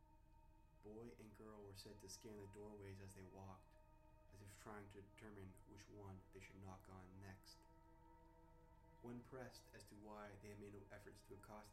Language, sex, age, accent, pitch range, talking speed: English, male, 20-39, American, 100-115 Hz, 185 wpm